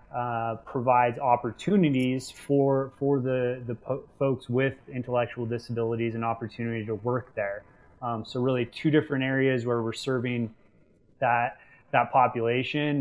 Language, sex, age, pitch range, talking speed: English, male, 20-39, 110-125 Hz, 135 wpm